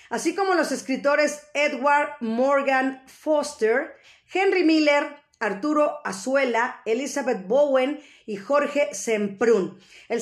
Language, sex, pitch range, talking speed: Spanish, female, 240-300 Hz, 100 wpm